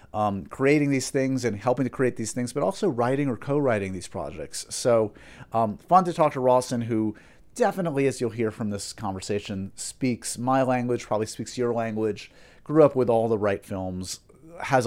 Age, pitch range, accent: 30-49, 100-125 Hz, American